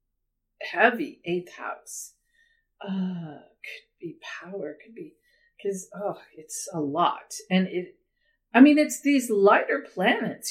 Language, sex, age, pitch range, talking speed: English, female, 50-69, 180-295 Hz, 125 wpm